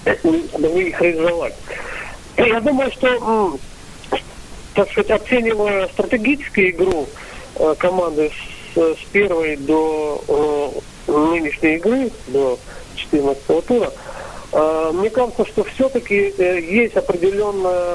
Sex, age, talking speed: male, 40-59, 95 wpm